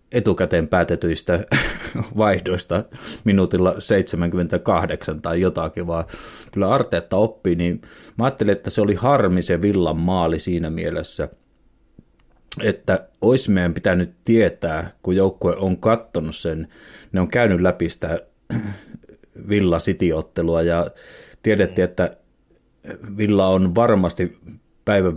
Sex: male